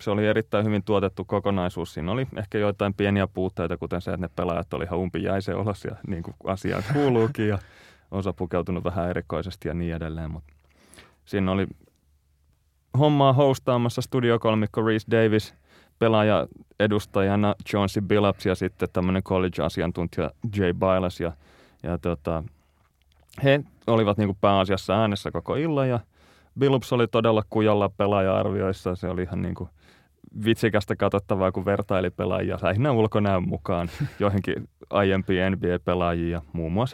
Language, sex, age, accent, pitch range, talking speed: Finnish, male, 30-49, native, 85-105 Hz, 140 wpm